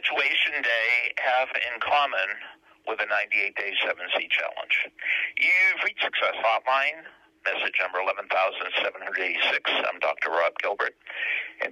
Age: 60-79